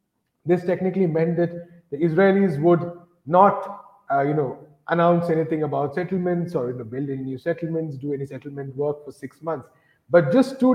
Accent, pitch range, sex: Indian, 155-180 Hz, male